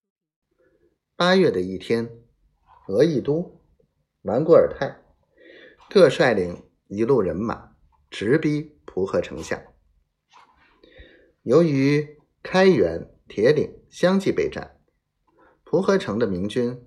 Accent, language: native, Chinese